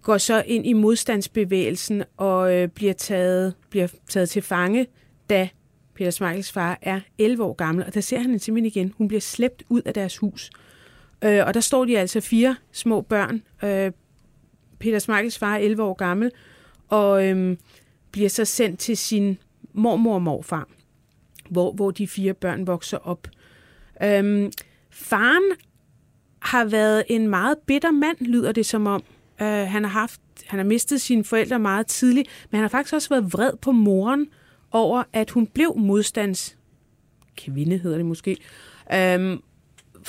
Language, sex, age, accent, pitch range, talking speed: Danish, female, 30-49, native, 190-230 Hz, 160 wpm